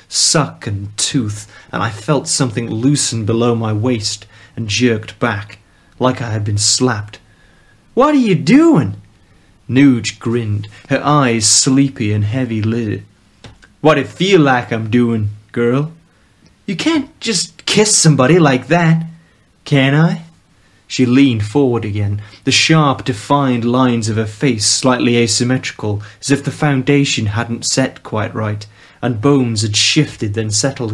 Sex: male